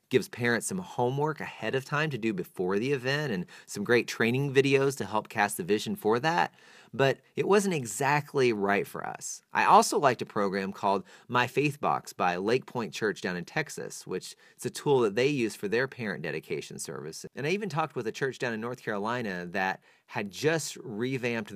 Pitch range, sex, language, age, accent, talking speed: 100-140 Hz, male, English, 30-49, American, 205 wpm